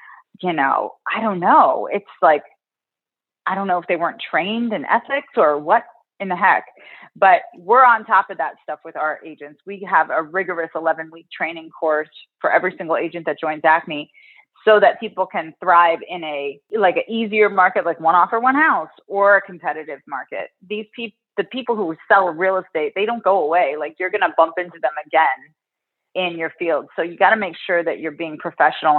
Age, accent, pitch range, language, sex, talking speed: 30-49, American, 160-215 Hz, English, female, 205 wpm